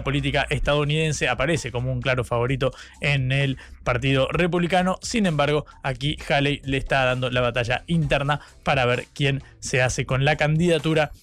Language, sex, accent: Spanish, male, Argentinian